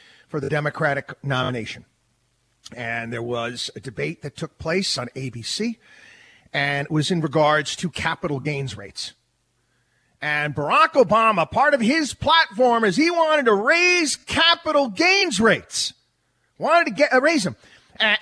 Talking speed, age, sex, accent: 150 wpm, 40-59, male, American